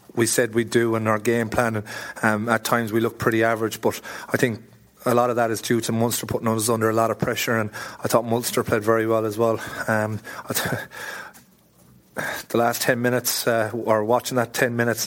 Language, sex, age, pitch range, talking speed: English, male, 30-49, 110-120 Hz, 210 wpm